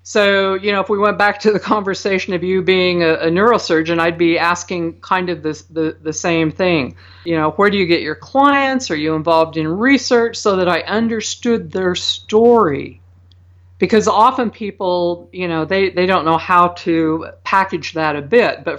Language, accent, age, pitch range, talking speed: English, American, 50-69, 160-215 Hz, 190 wpm